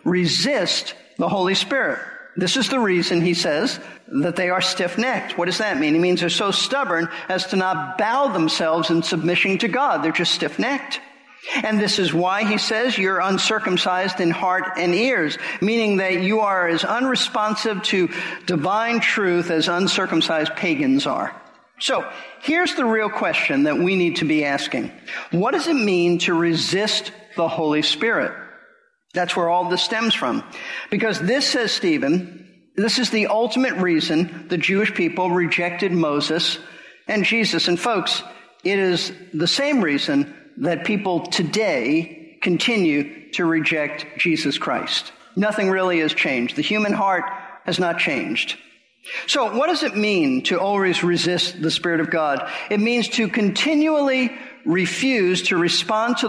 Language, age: English, 50-69